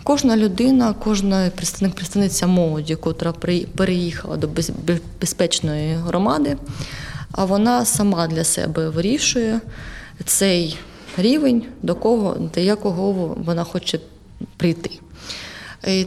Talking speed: 85 wpm